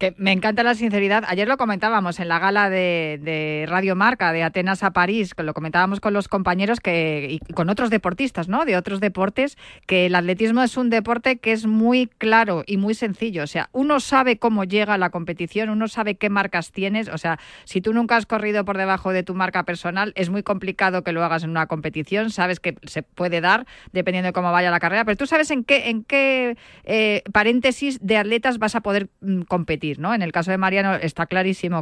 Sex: female